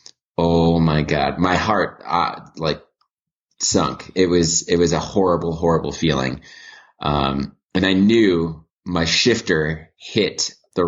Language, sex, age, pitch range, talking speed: English, male, 20-39, 80-95 Hz, 130 wpm